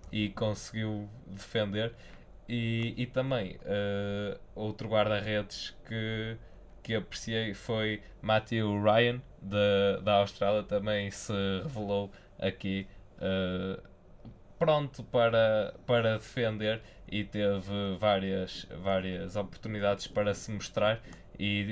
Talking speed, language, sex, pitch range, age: 90 wpm, Portuguese, male, 100-115 Hz, 20-39